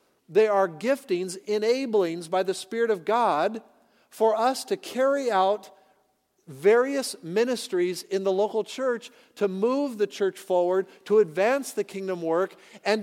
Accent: American